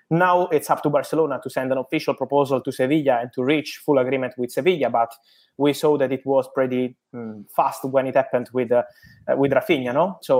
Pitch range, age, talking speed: 130-150 Hz, 20-39, 215 wpm